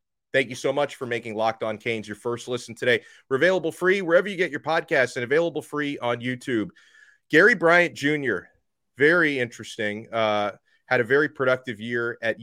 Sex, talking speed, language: male, 185 wpm, English